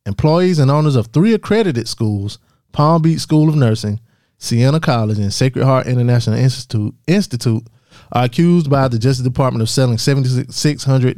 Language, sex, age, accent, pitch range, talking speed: English, male, 20-39, American, 115-140 Hz, 155 wpm